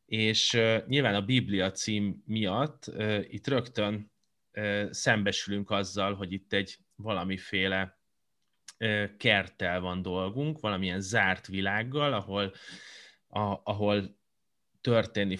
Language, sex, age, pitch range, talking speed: Hungarian, male, 30-49, 95-115 Hz, 110 wpm